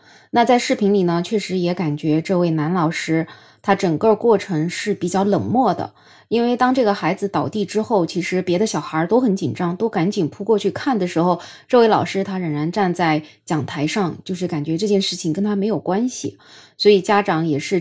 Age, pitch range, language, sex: 20-39, 160-205 Hz, Chinese, female